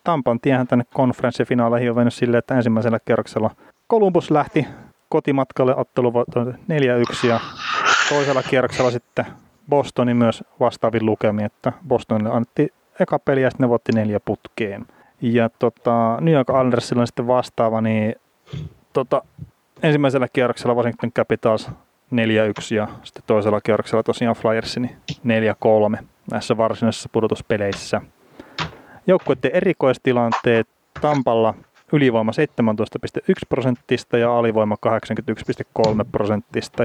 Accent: native